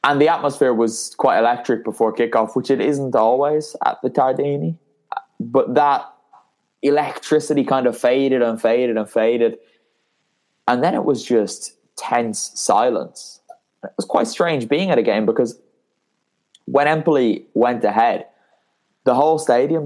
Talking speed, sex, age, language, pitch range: 145 wpm, male, 10-29, English, 105-130 Hz